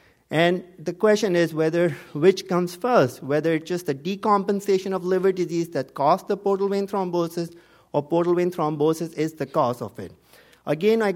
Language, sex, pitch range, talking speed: English, male, 150-195 Hz, 175 wpm